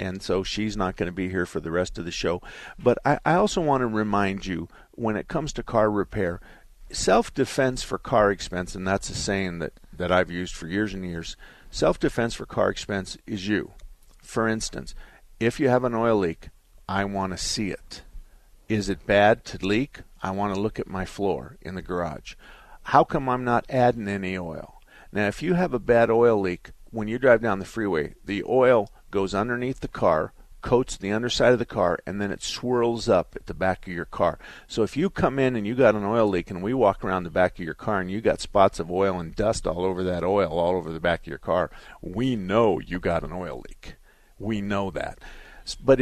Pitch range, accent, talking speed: 90-120 Hz, American, 225 wpm